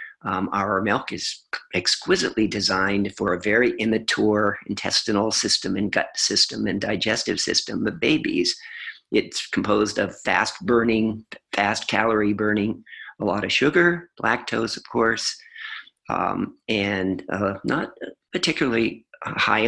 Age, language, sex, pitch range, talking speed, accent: 50-69, English, male, 100-135 Hz, 125 wpm, American